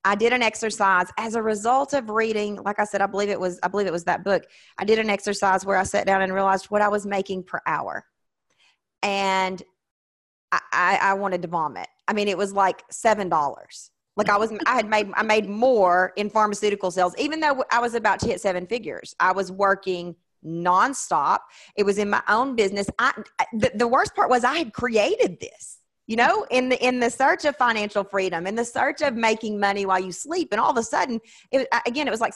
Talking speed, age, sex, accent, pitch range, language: 225 wpm, 30-49, female, American, 190-230 Hz, English